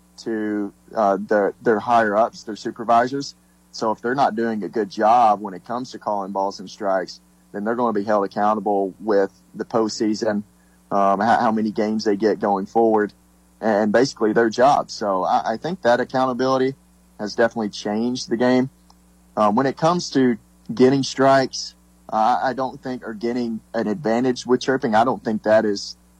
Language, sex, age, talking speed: English, male, 30-49, 185 wpm